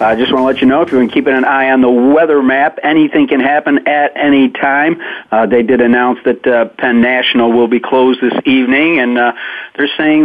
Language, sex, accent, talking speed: English, male, American, 230 wpm